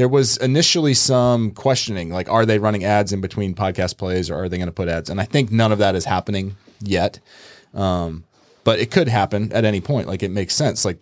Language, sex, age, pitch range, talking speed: English, male, 20-39, 90-115 Hz, 235 wpm